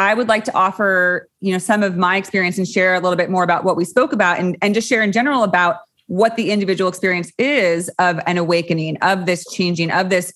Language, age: English, 20-39